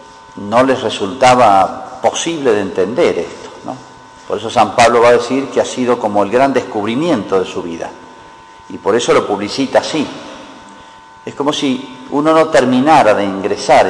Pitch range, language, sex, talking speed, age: 100-145 Hz, Spanish, male, 170 wpm, 50-69